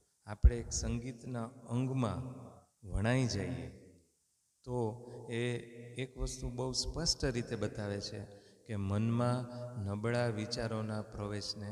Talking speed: 100 wpm